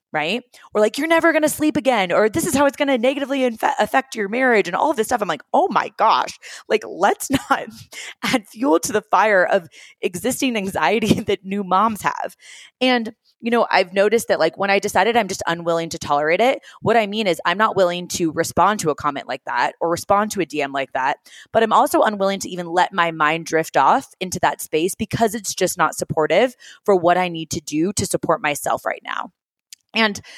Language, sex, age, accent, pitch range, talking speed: English, female, 20-39, American, 170-235 Hz, 225 wpm